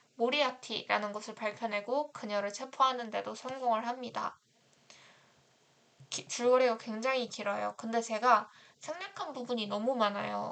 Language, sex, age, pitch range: Korean, female, 20-39, 215-265 Hz